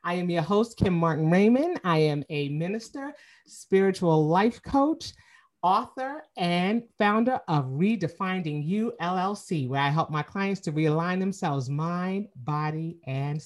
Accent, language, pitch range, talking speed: American, English, 165-220 Hz, 145 wpm